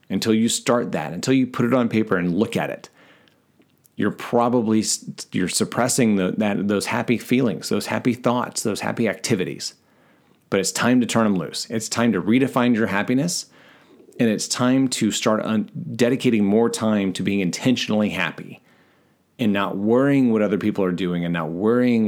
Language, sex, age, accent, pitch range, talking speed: English, male, 30-49, American, 100-125 Hz, 170 wpm